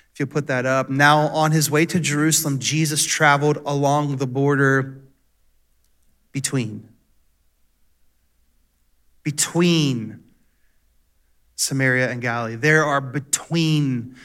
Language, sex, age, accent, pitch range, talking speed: English, male, 30-49, American, 140-185 Hz, 100 wpm